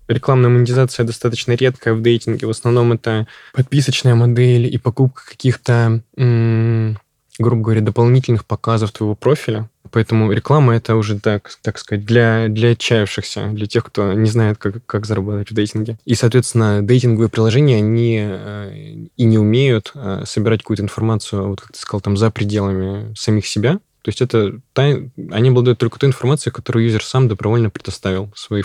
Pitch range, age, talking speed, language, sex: 105-125 Hz, 20-39, 155 wpm, Russian, male